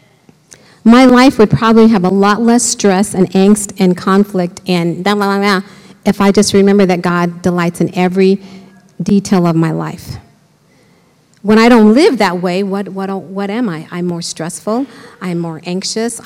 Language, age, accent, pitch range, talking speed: English, 50-69, American, 180-235 Hz, 160 wpm